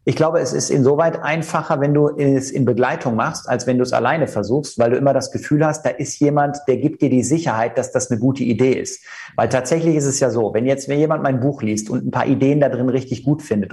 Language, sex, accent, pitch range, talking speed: German, male, German, 130-160 Hz, 260 wpm